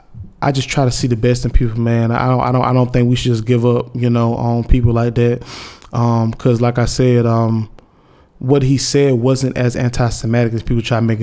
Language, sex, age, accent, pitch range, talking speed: English, male, 20-39, American, 115-130 Hz, 240 wpm